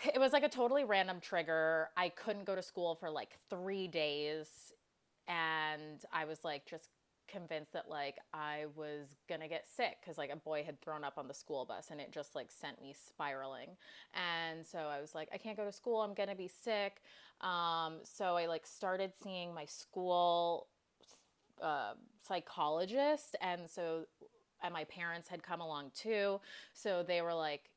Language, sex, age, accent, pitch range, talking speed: English, female, 20-39, American, 155-200 Hz, 180 wpm